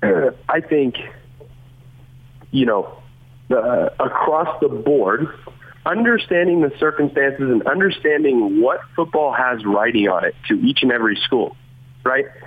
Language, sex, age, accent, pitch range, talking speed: English, male, 30-49, American, 125-185 Hz, 120 wpm